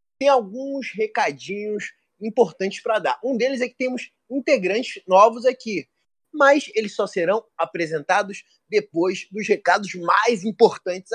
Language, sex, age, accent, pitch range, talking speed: Portuguese, male, 20-39, Brazilian, 190-240 Hz, 130 wpm